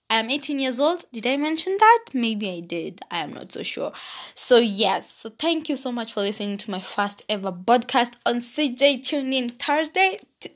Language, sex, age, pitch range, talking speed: English, female, 20-39, 210-290 Hz, 195 wpm